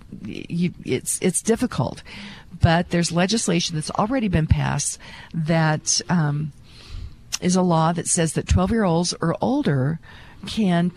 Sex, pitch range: female, 160-200 Hz